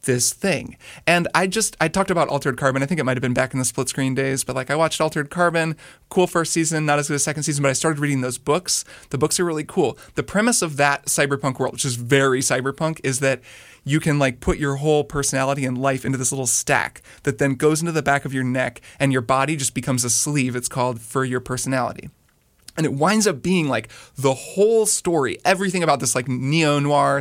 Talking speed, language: 240 wpm, English